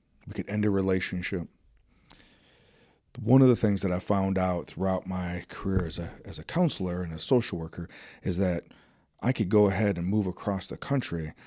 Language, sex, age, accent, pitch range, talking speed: English, male, 40-59, American, 90-105 Hz, 190 wpm